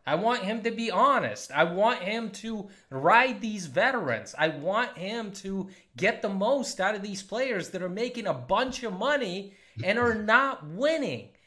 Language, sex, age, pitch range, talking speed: English, male, 30-49, 170-235 Hz, 185 wpm